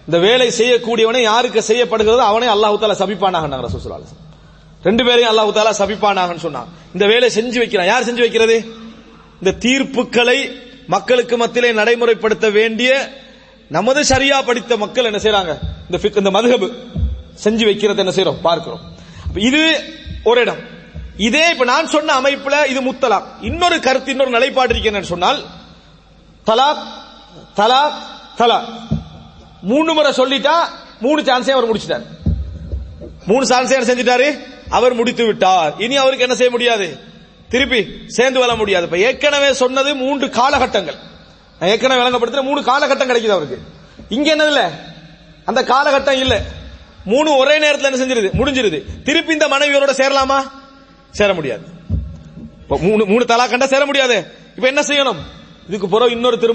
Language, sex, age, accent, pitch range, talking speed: English, male, 30-49, Indian, 210-270 Hz, 100 wpm